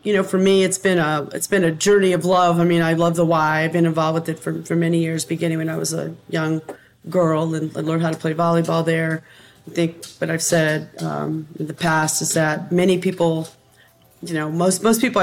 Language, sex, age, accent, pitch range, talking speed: English, female, 40-59, American, 160-180 Hz, 240 wpm